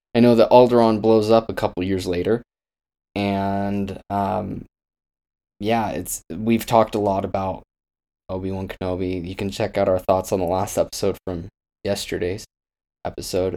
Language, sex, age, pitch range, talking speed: English, male, 20-39, 95-110 Hz, 155 wpm